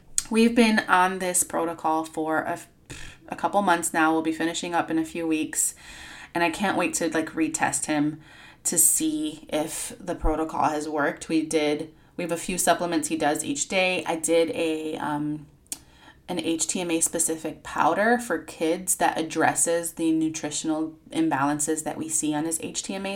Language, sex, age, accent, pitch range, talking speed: English, female, 20-39, American, 160-200 Hz, 170 wpm